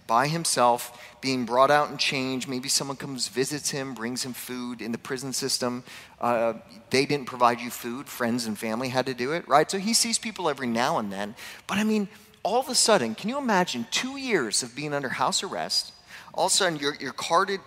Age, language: 40-59, English